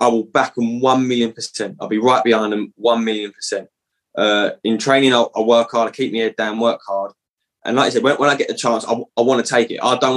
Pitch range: 110-125 Hz